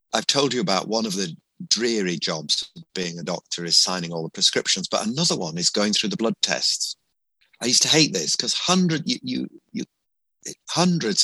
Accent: British